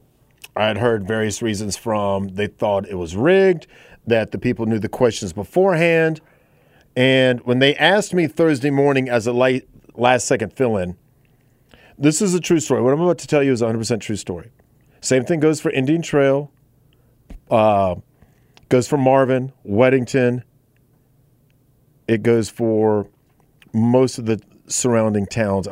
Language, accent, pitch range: English, American, 110-145 Hz